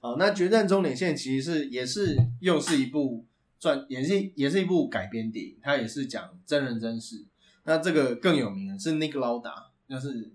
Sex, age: male, 20-39